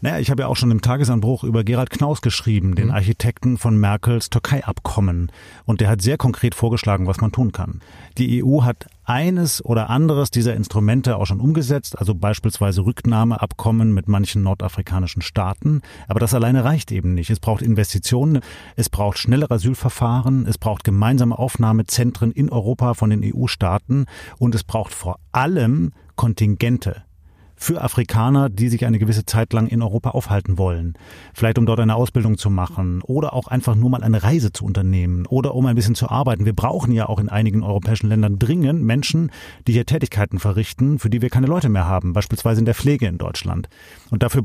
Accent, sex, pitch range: German, male, 105-125 Hz